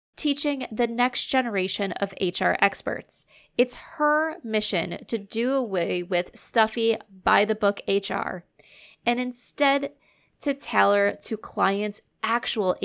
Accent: American